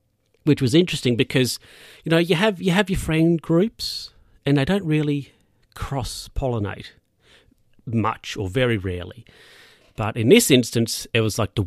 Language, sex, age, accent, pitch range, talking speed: English, male, 40-59, Australian, 100-125 Hz, 155 wpm